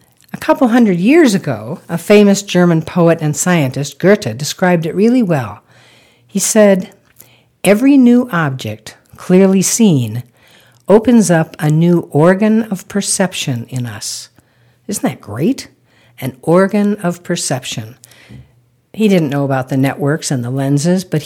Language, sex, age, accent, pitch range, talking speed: English, female, 60-79, American, 140-205 Hz, 140 wpm